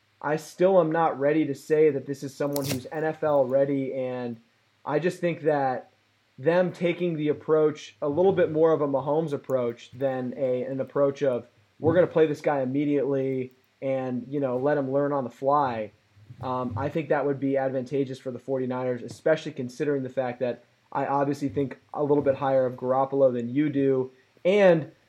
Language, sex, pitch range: English, male, 130-160 Hz